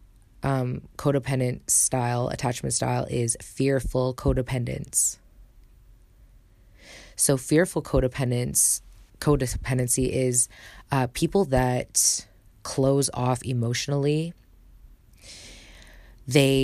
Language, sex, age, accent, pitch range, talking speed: English, female, 20-39, American, 120-135 Hz, 70 wpm